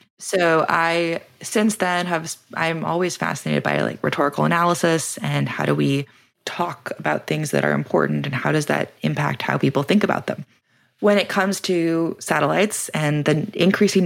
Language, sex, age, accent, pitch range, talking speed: English, female, 20-39, American, 150-190 Hz, 170 wpm